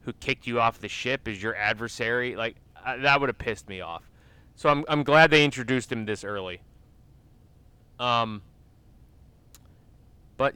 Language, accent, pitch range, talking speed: English, American, 110-150 Hz, 160 wpm